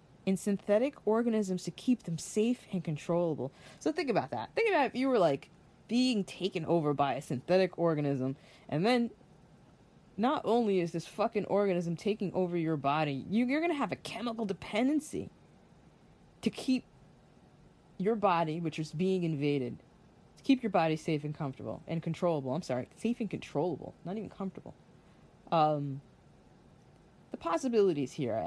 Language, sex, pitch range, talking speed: English, female, 155-215 Hz, 160 wpm